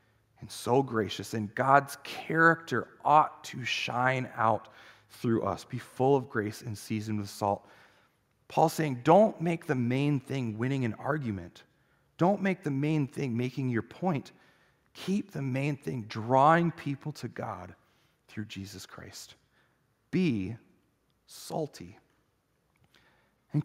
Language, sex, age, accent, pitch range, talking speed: English, male, 40-59, American, 115-175 Hz, 130 wpm